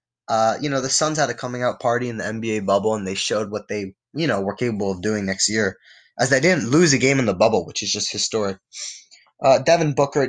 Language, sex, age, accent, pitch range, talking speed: English, male, 20-39, American, 125-155 Hz, 250 wpm